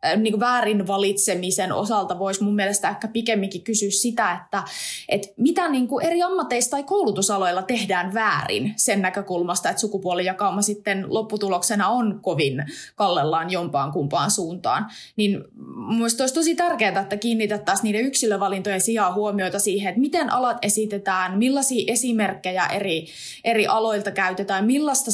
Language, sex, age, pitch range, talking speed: Finnish, female, 20-39, 195-225 Hz, 135 wpm